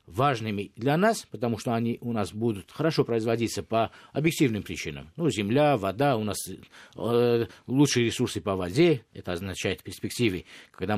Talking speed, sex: 155 wpm, male